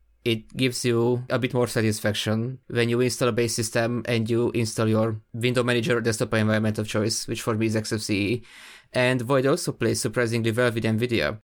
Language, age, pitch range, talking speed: English, 20-39, 110-120 Hz, 190 wpm